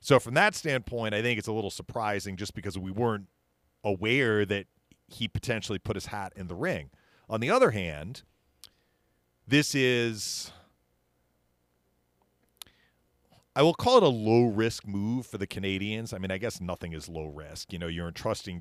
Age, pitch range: 40-59, 80-115 Hz